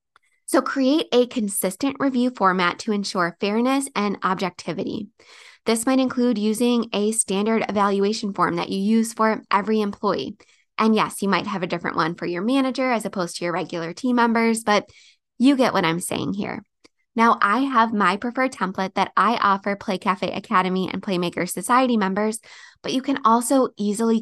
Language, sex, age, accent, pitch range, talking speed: English, female, 20-39, American, 195-245 Hz, 175 wpm